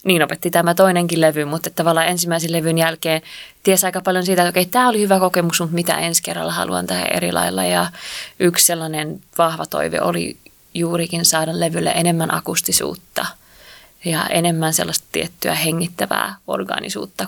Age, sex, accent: 20-39, female, native